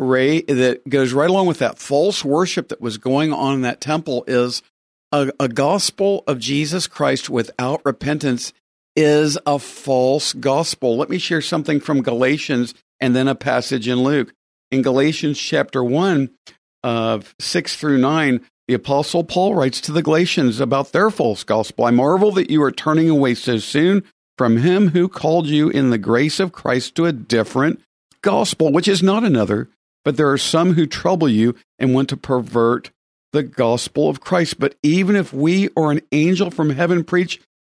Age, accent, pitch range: 50-69, American, 130-175 Hz